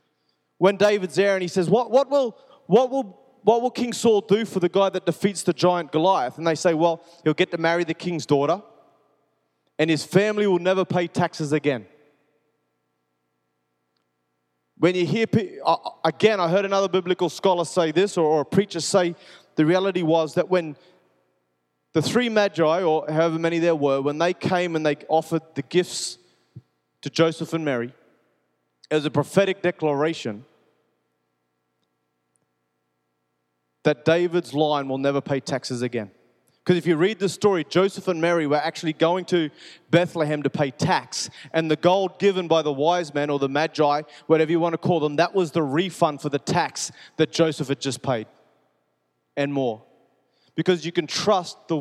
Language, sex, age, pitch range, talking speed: English, male, 20-39, 145-180 Hz, 170 wpm